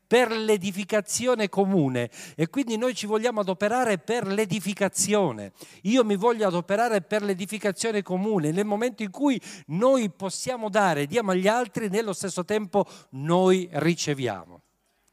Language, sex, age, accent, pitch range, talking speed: Italian, male, 50-69, native, 160-200 Hz, 130 wpm